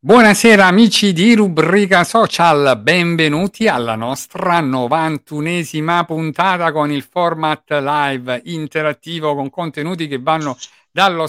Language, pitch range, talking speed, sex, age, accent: Italian, 145-195 Hz, 105 wpm, male, 50-69, native